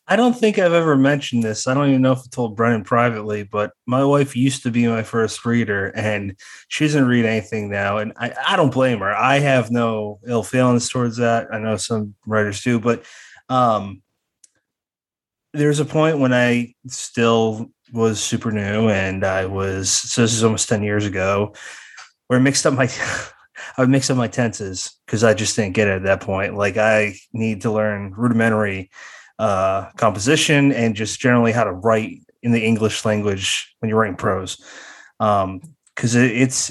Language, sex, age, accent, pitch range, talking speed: English, male, 20-39, American, 105-125 Hz, 190 wpm